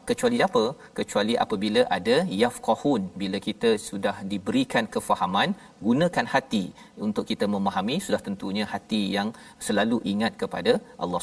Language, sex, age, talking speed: Malayalam, male, 40-59, 130 wpm